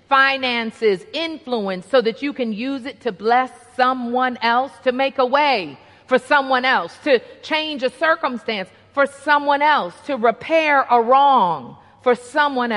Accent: American